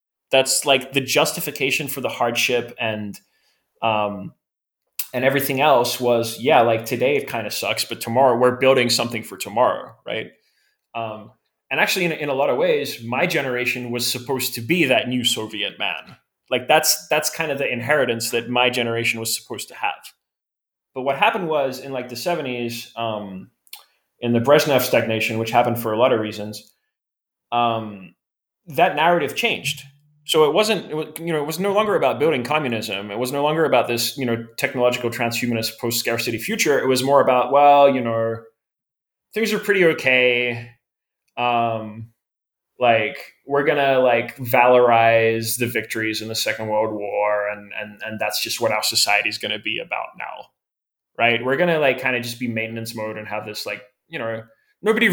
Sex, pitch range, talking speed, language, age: male, 115-140 Hz, 175 wpm, English, 20-39